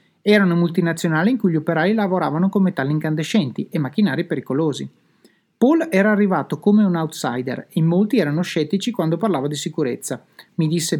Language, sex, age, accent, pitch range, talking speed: Italian, male, 30-49, native, 155-200 Hz, 170 wpm